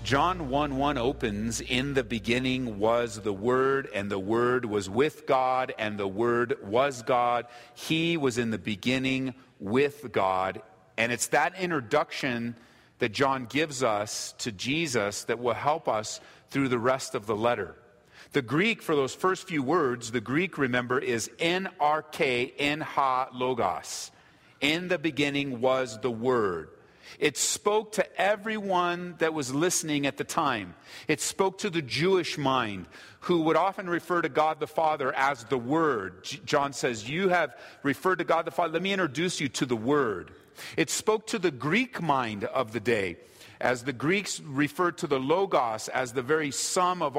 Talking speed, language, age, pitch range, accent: 170 wpm, English, 40-59, 125-165 Hz, American